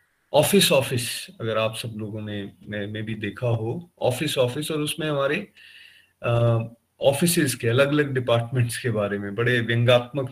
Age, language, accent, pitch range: 30-49, Hindi, native, 110-145 Hz